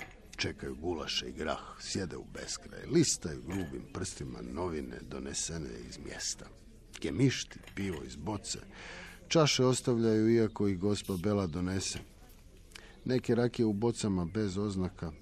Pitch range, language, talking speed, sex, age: 85-115 Hz, Croatian, 120 wpm, male, 50-69